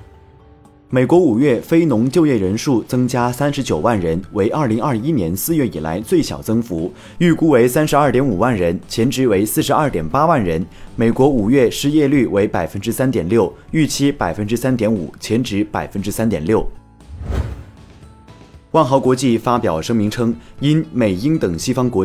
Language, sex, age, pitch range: Chinese, male, 30-49, 105-140 Hz